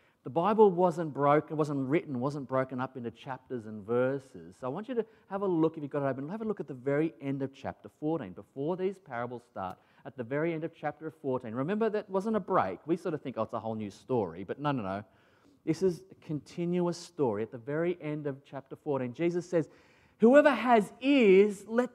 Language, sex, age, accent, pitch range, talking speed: English, male, 30-49, Australian, 135-190 Hz, 230 wpm